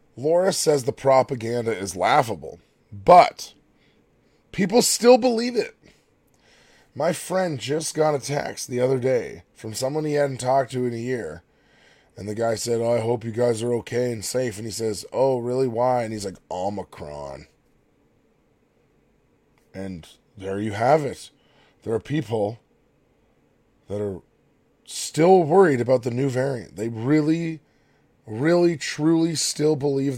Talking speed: 145 wpm